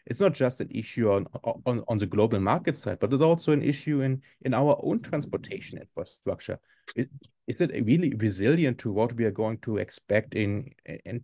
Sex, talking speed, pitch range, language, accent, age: male, 200 wpm, 110-140 Hz, English, German, 30-49